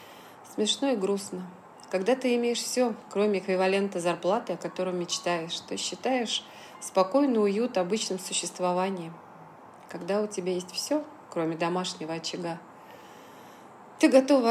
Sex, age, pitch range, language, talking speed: female, 30-49, 180-240 Hz, Russian, 120 wpm